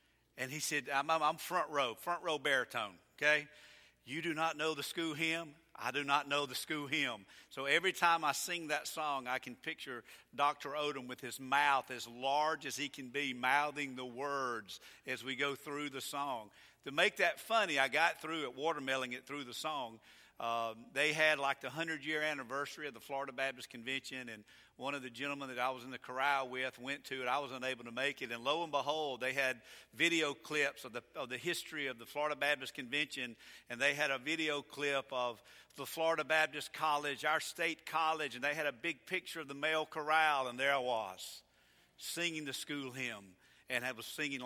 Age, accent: 50-69, American